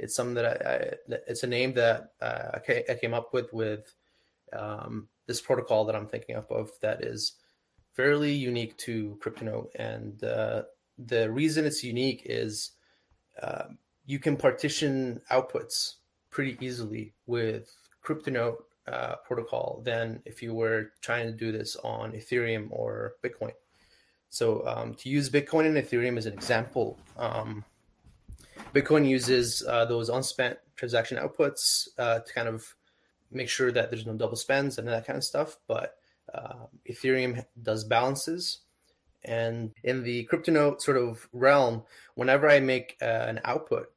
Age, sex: 20-39, male